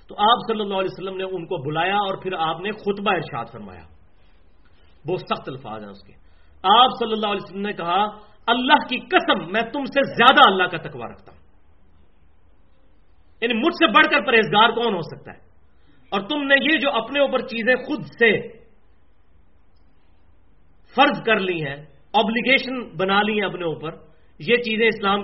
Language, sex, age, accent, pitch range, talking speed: English, male, 40-59, Indian, 155-230 Hz, 125 wpm